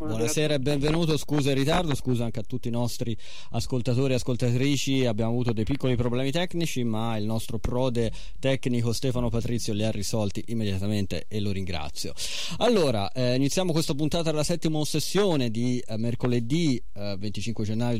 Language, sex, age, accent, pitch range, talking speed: Italian, male, 30-49, native, 95-125 Hz, 165 wpm